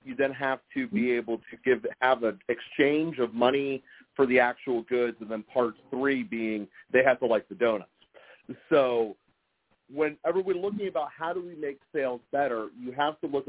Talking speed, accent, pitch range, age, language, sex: 190 wpm, American, 115-155 Hz, 40-59, English, male